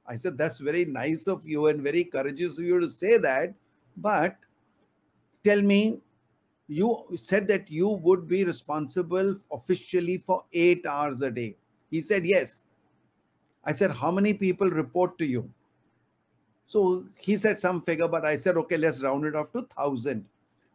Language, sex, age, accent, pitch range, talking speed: English, male, 50-69, Indian, 150-190 Hz, 165 wpm